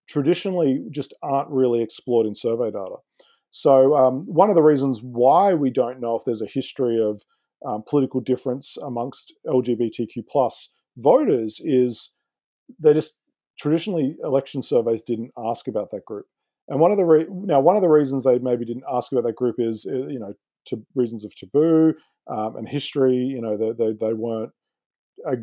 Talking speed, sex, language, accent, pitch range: 175 wpm, male, English, Australian, 115-140 Hz